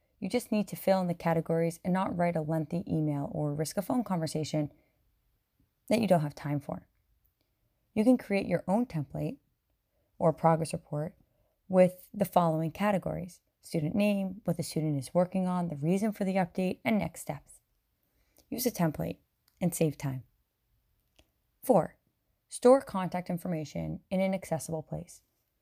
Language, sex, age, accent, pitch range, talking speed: English, female, 20-39, American, 150-185 Hz, 160 wpm